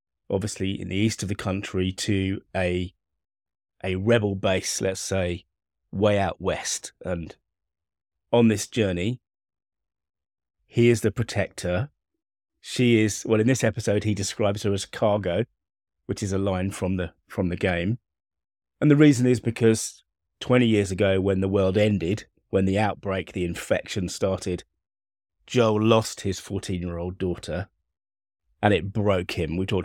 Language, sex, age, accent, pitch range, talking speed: English, male, 30-49, British, 85-105 Hz, 155 wpm